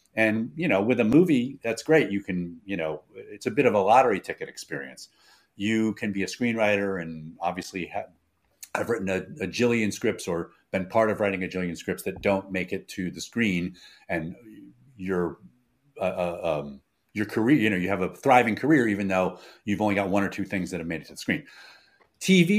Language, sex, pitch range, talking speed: English, male, 85-110 Hz, 215 wpm